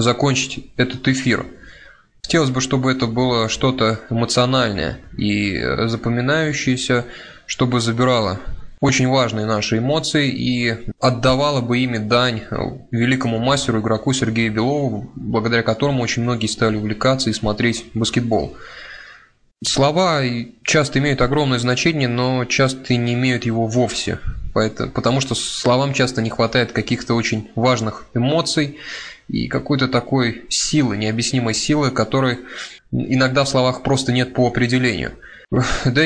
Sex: male